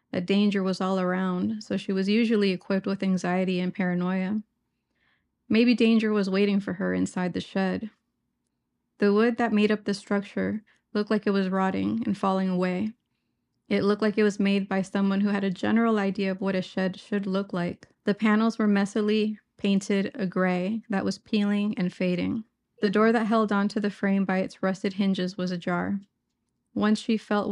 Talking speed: 190 wpm